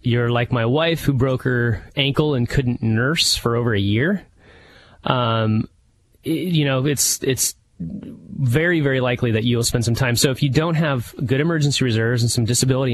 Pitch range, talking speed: 115-145 Hz, 185 wpm